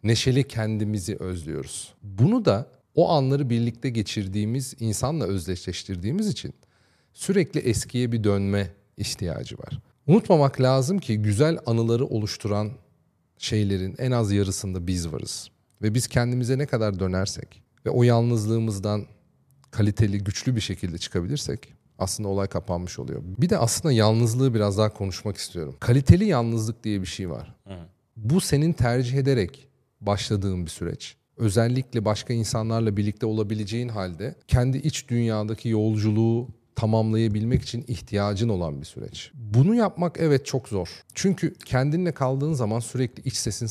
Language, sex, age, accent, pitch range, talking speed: Turkish, male, 40-59, native, 105-130 Hz, 135 wpm